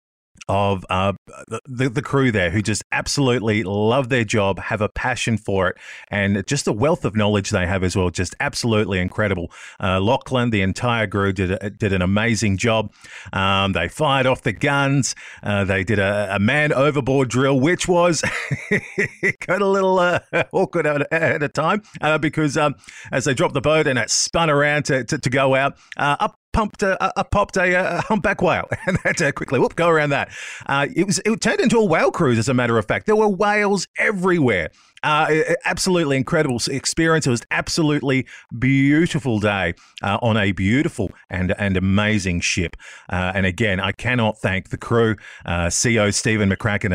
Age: 30-49